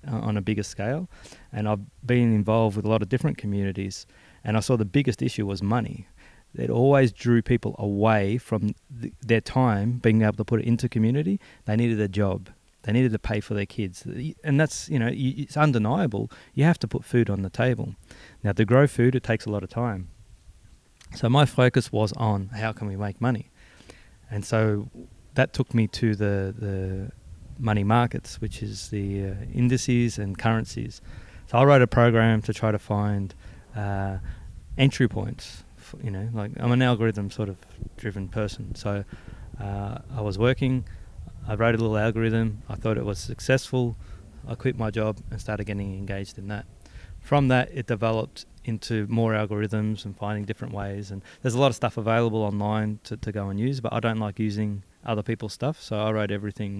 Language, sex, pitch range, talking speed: English, male, 100-120 Hz, 190 wpm